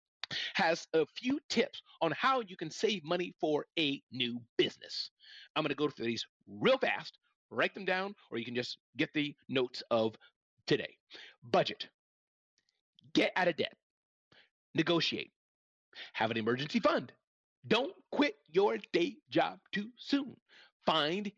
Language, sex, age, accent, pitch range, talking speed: English, male, 40-59, American, 145-240 Hz, 145 wpm